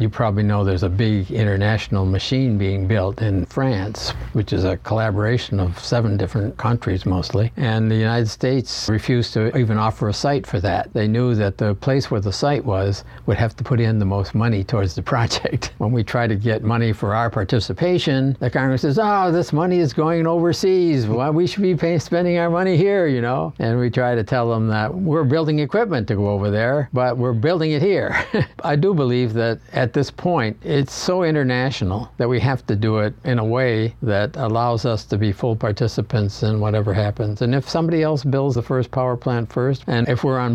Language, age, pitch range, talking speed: English, 60-79, 105-135 Hz, 215 wpm